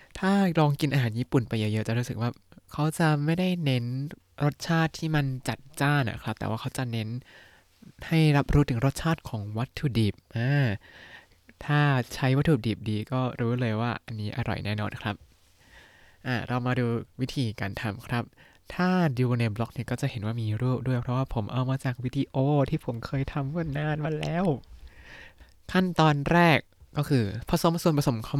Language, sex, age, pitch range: Thai, male, 20-39, 110-145 Hz